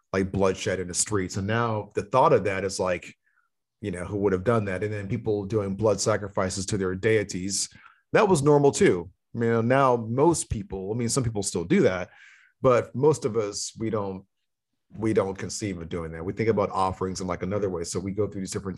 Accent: American